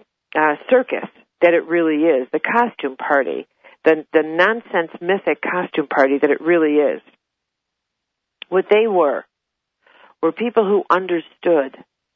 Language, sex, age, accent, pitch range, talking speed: English, female, 50-69, American, 160-200 Hz, 130 wpm